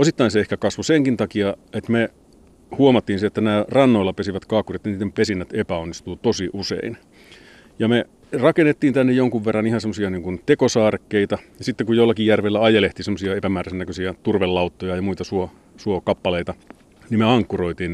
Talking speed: 155 wpm